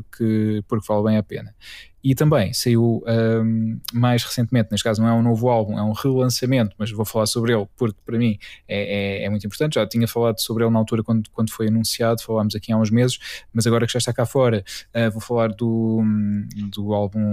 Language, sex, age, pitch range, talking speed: Portuguese, male, 20-39, 110-120 Hz, 210 wpm